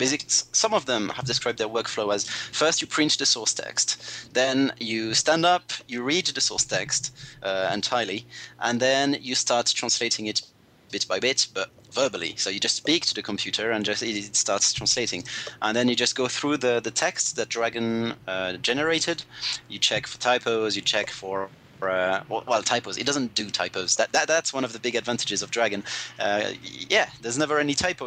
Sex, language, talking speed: male, English, 195 wpm